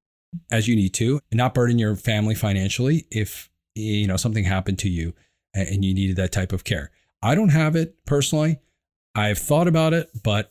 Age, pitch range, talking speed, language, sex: 40-59, 95-130 Hz, 195 wpm, English, male